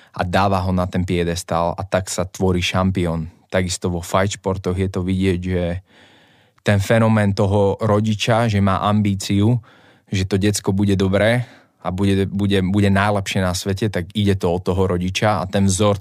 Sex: male